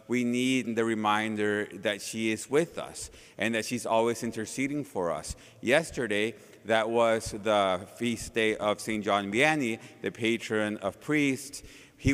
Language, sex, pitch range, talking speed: English, male, 115-145 Hz, 155 wpm